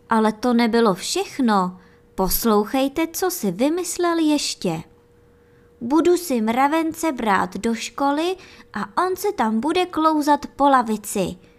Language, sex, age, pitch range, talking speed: Czech, male, 20-39, 190-280 Hz, 120 wpm